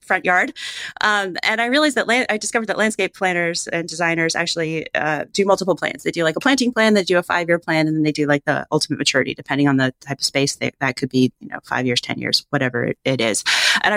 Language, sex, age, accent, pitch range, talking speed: English, female, 30-49, American, 135-175 Hz, 245 wpm